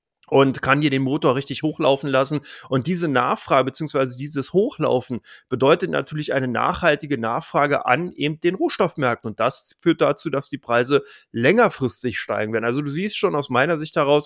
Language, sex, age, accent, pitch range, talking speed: German, male, 30-49, German, 125-150 Hz, 175 wpm